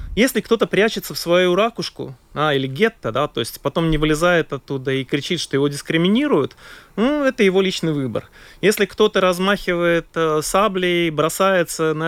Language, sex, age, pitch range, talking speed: Russian, male, 20-39, 140-195 Hz, 165 wpm